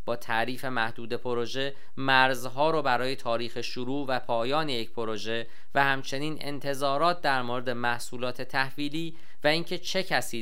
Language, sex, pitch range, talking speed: Persian, male, 115-145 Hz, 140 wpm